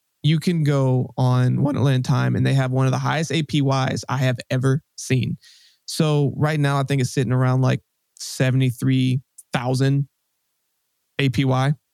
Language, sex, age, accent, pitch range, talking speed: English, male, 20-39, American, 130-145 Hz, 145 wpm